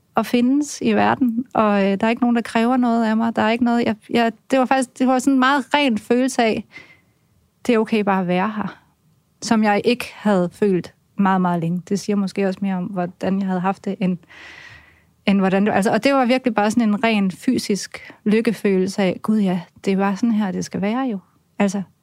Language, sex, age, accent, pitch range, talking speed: Danish, female, 30-49, native, 185-225 Hz, 225 wpm